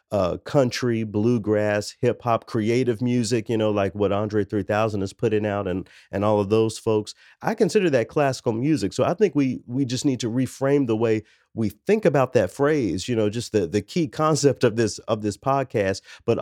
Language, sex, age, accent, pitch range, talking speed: English, male, 40-59, American, 105-125 Hz, 200 wpm